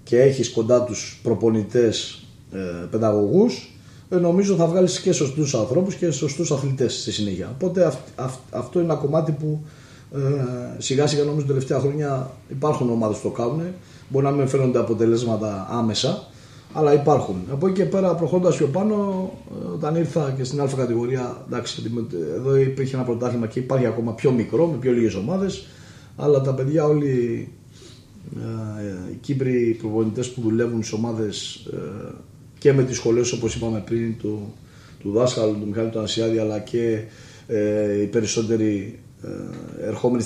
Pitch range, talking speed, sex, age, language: 115-150 Hz, 150 wpm, male, 30-49, Greek